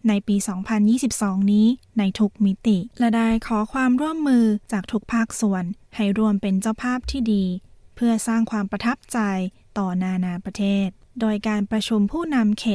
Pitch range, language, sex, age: 195-225 Hz, Thai, female, 20-39